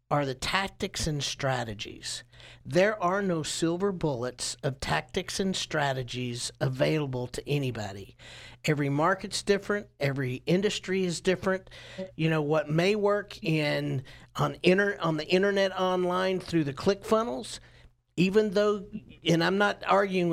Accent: American